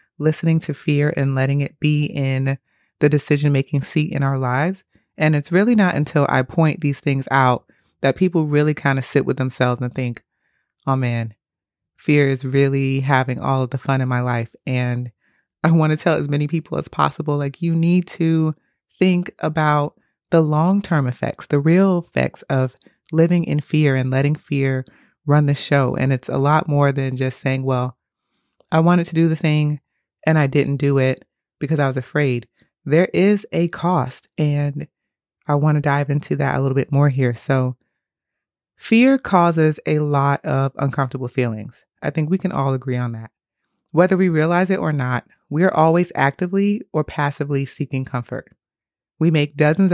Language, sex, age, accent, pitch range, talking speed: English, female, 30-49, American, 135-160 Hz, 185 wpm